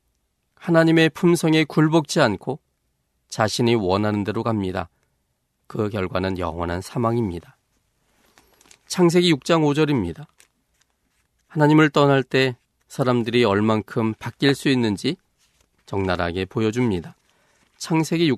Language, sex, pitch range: Korean, male, 105-150 Hz